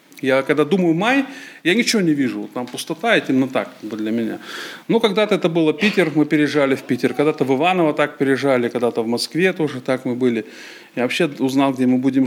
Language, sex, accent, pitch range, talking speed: Russian, male, native, 150-215 Hz, 210 wpm